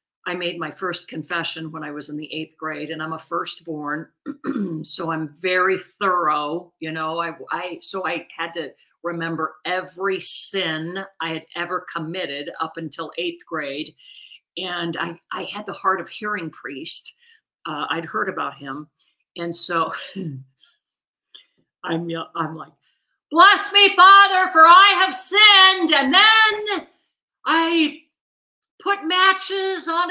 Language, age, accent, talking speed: English, 50-69, American, 140 wpm